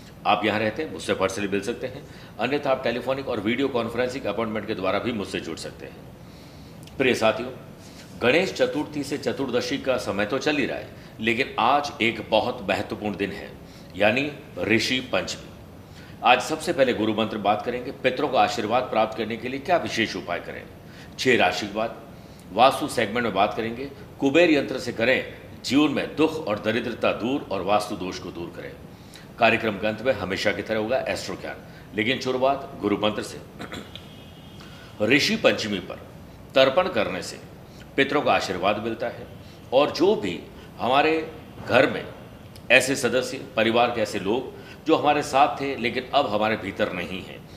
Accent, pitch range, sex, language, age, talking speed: native, 105-140 Hz, male, Hindi, 50-69, 165 wpm